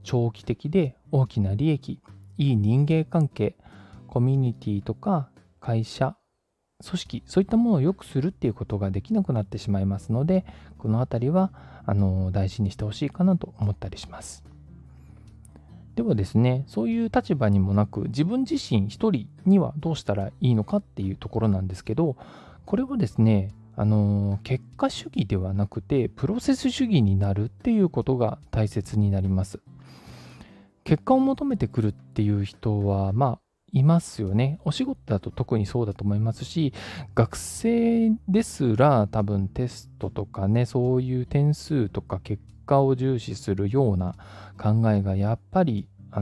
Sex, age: male, 20-39